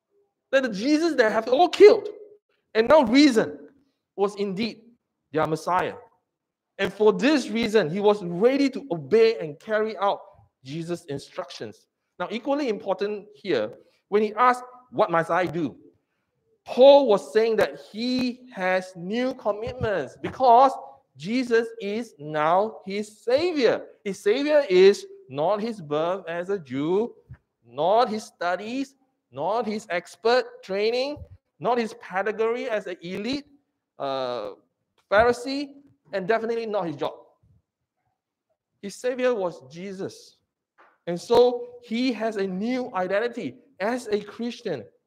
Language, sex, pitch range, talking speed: English, male, 185-260 Hz, 130 wpm